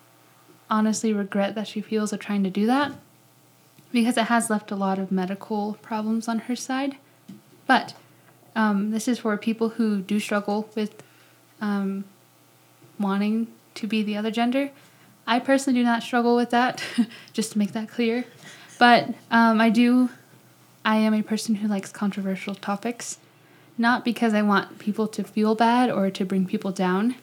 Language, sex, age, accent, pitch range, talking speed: English, female, 10-29, American, 195-230 Hz, 165 wpm